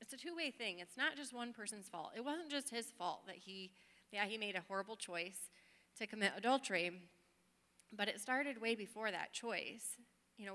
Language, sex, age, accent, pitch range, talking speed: English, female, 30-49, American, 190-235 Hz, 200 wpm